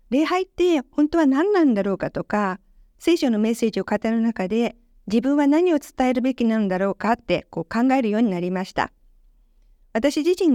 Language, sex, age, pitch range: Japanese, female, 50-69, 205-275 Hz